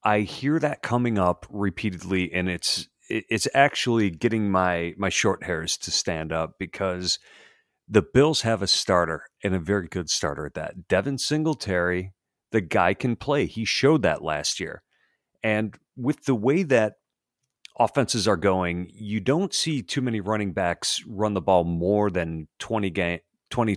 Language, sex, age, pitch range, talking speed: English, male, 40-59, 95-130 Hz, 165 wpm